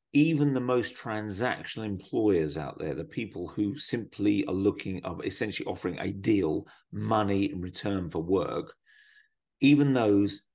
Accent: British